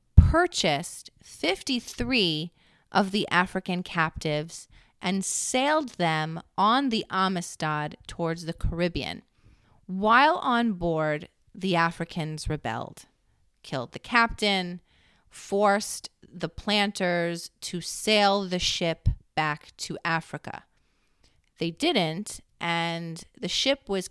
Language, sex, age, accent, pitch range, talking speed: English, female, 30-49, American, 160-200 Hz, 100 wpm